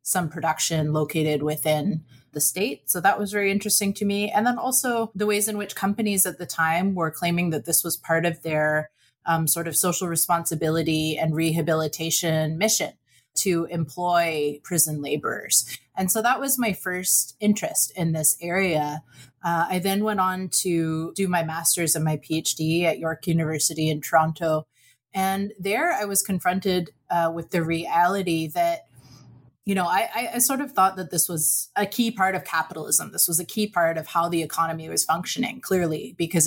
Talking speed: 180 wpm